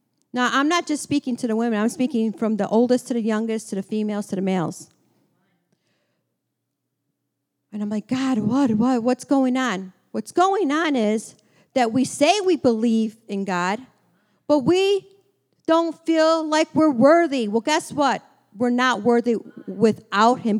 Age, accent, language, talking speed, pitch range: 50-69, American, English, 165 wpm, 215-280 Hz